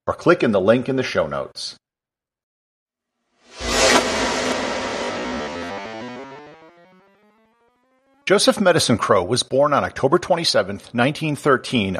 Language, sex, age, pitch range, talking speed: English, male, 50-69, 115-170 Hz, 90 wpm